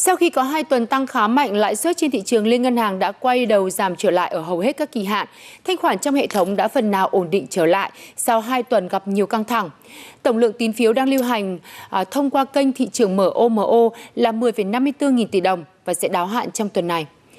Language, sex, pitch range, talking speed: Vietnamese, female, 205-265 Hz, 250 wpm